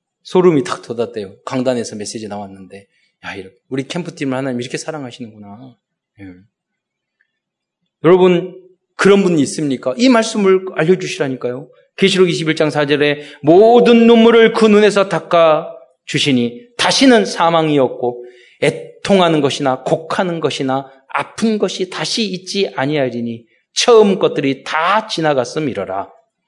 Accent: native